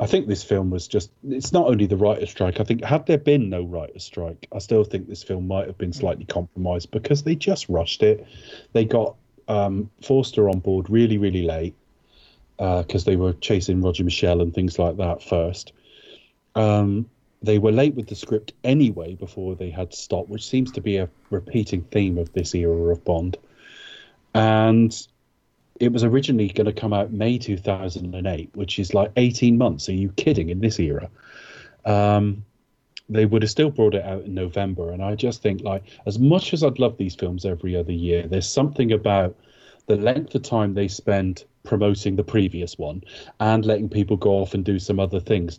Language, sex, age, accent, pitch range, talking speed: English, male, 30-49, British, 90-110 Hz, 195 wpm